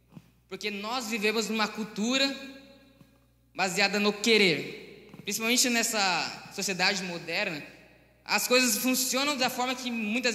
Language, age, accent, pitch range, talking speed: Portuguese, 20-39, Brazilian, 200-235 Hz, 110 wpm